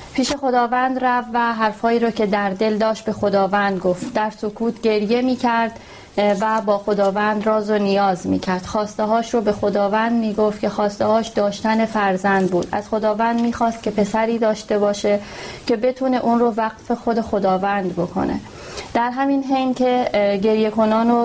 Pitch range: 205-230 Hz